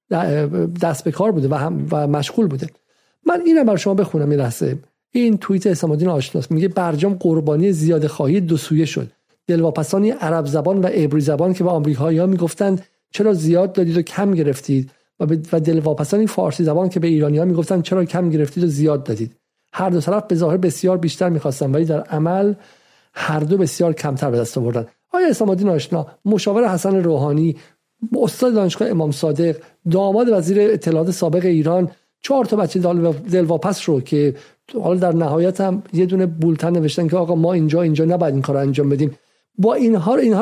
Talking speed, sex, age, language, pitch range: 175 wpm, male, 50-69, Persian, 155-200 Hz